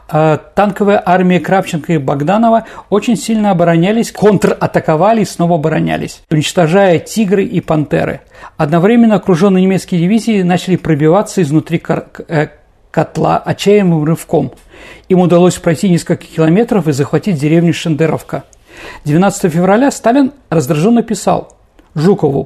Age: 50-69